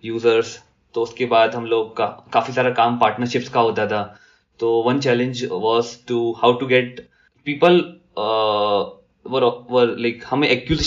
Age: 20-39